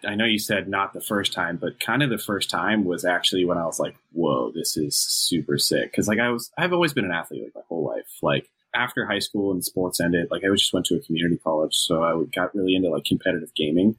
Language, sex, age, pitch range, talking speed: English, male, 20-39, 90-110 Hz, 270 wpm